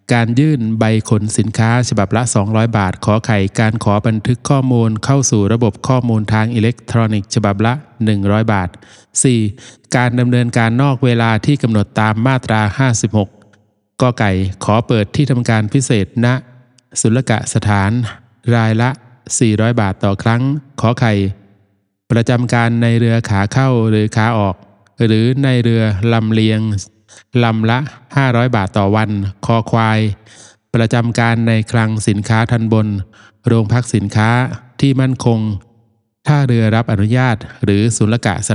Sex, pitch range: male, 105-120 Hz